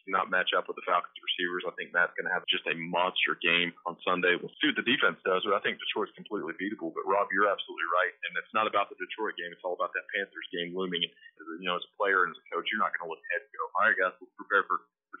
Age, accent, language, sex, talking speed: 30-49, American, English, male, 300 wpm